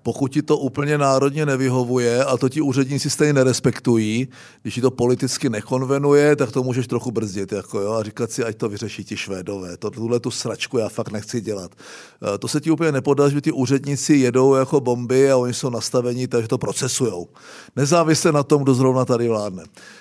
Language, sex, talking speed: Czech, male, 195 wpm